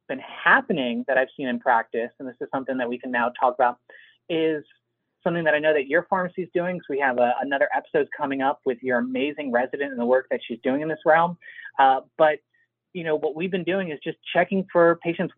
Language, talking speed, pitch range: English, 240 wpm, 135-195 Hz